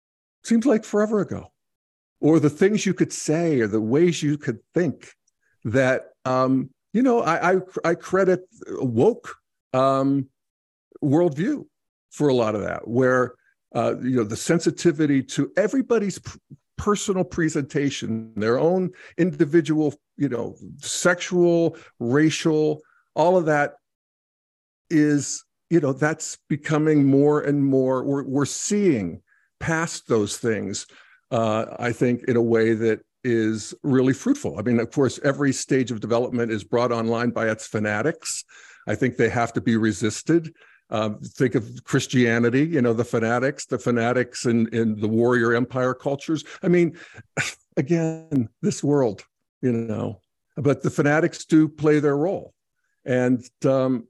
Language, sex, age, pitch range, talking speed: English, male, 50-69, 120-160 Hz, 140 wpm